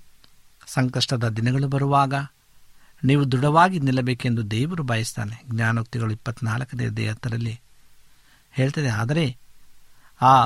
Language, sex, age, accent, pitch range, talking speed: Kannada, male, 60-79, native, 115-140 Hz, 80 wpm